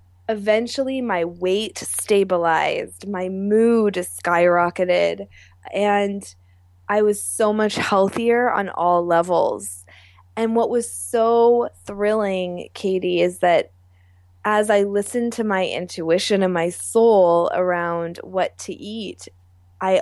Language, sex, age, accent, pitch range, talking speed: English, female, 20-39, American, 170-210 Hz, 115 wpm